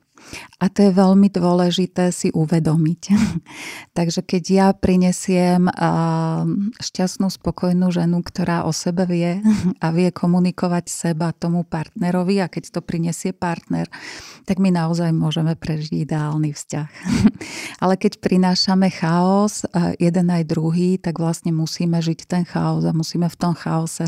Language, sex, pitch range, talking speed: Slovak, female, 160-185 Hz, 135 wpm